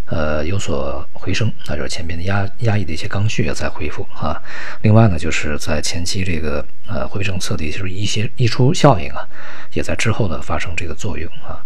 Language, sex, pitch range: Chinese, male, 75-95 Hz